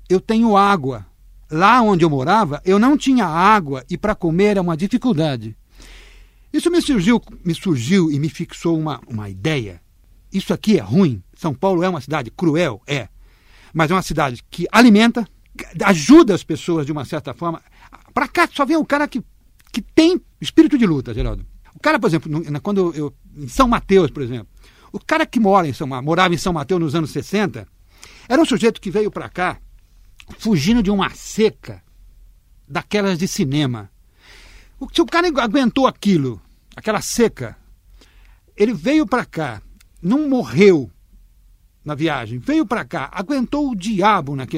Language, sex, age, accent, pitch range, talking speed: Portuguese, male, 60-79, Brazilian, 130-210 Hz, 160 wpm